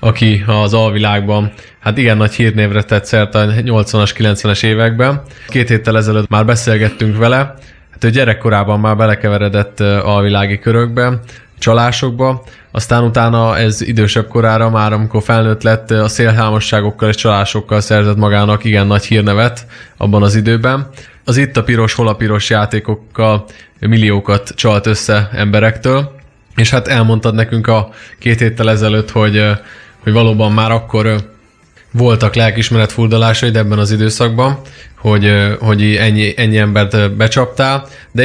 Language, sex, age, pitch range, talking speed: Hungarian, male, 20-39, 105-115 Hz, 130 wpm